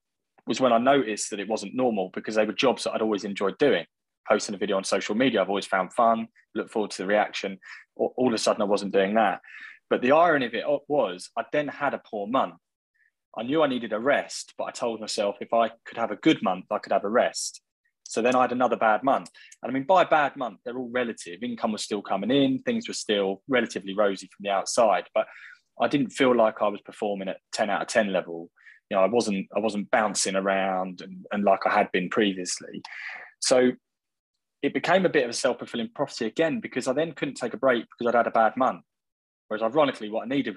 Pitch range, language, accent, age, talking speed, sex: 100-125 Hz, English, British, 20-39, 240 wpm, male